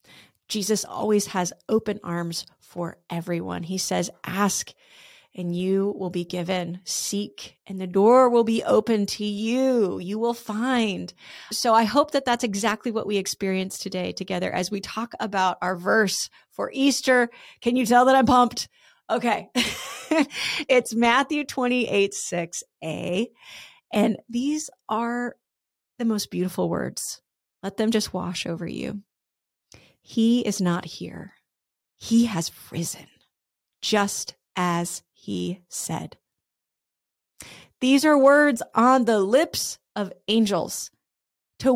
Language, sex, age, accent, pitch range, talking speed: English, female, 30-49, American, 185-245 Hz, 130 wpm